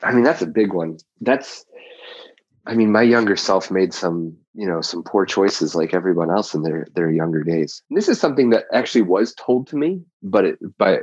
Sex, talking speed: male, 205 wpm